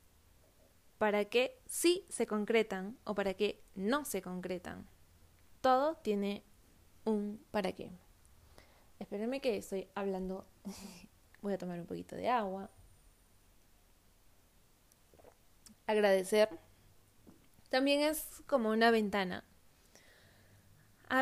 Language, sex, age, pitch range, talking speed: Spanish, female, 20-39, 185-230 Hz, 95 wpm